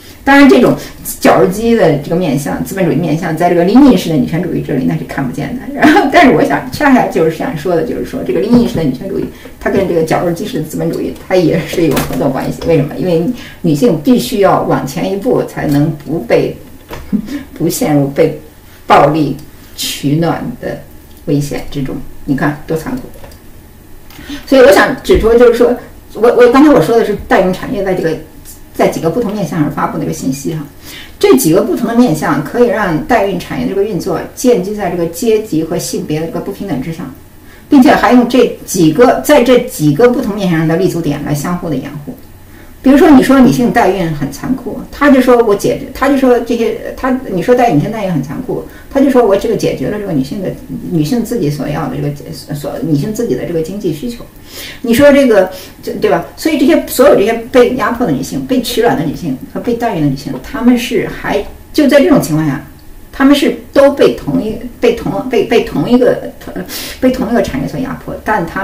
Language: Chinese